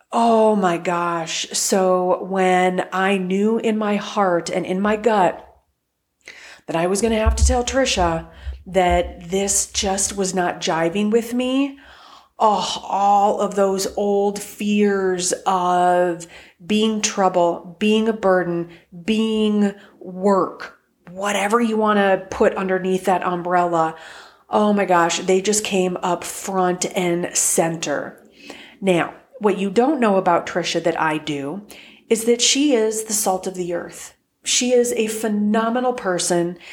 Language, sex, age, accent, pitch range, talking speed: English, female, 30-49, American, 175-210 Hz, 140 wpm